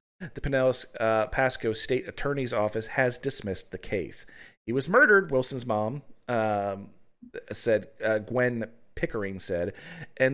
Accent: American